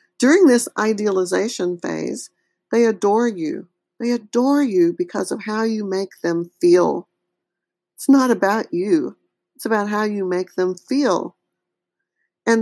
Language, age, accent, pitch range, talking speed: English, 50-69, American, 180-240 Hz, 140 wpm